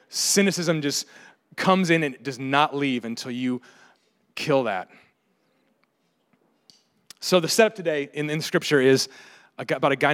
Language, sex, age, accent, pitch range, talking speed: English, male, 30-49, American, 135-185 Hz, 150 wpm